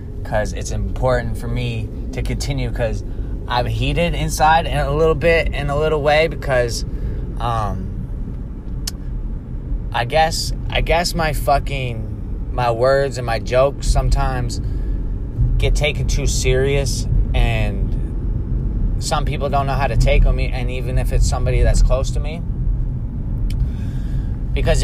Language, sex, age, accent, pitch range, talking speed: English, male, 20-39, American, 110-140 Hz, 135 wpm